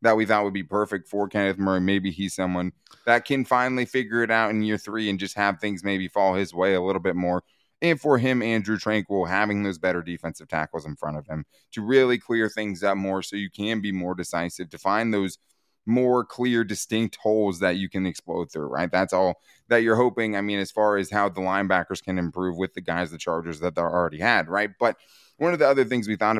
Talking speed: 240 wpm